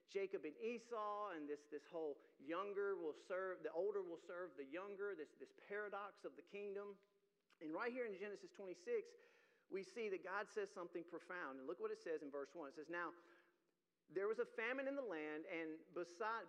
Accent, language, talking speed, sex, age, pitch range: American, English, 200 wpm, male, 40-59, 155-245 Hz